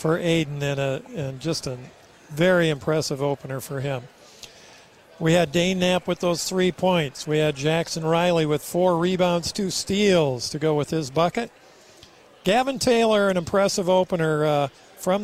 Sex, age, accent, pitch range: male, 50-69, American, 150-185 Hz